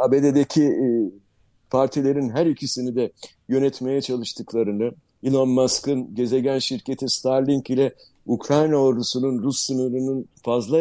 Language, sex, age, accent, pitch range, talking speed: Turkish, male, 60-79, native, 120-150 Hz, 100 wpm